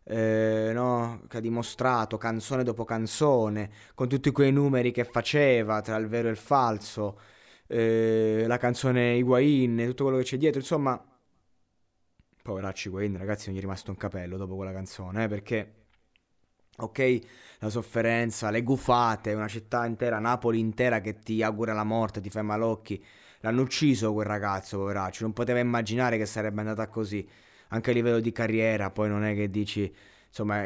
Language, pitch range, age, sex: Italian, 105-120 Hz, 20-39, male